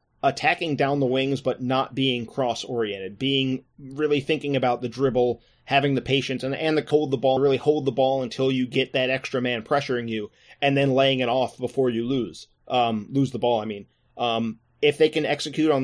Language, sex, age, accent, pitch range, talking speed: English, male, 30-49, American, 120-140 Hz, 210 wpm